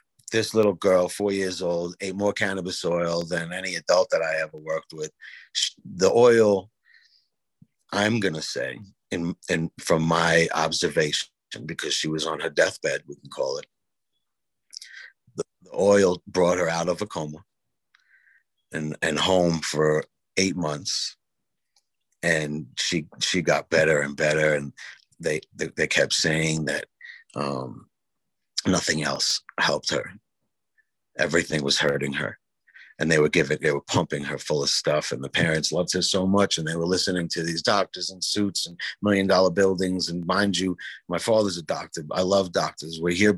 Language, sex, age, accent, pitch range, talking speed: English, male, 60-79, American, 80-100 Hz, 165 wpm